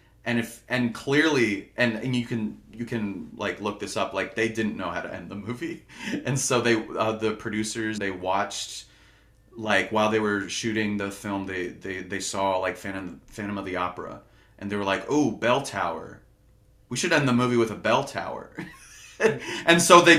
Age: 30-49